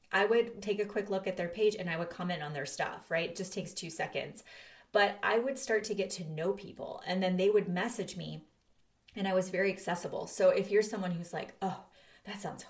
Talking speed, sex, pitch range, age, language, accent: 240 wpm, female, 170-205 Hz, 30-49, English, American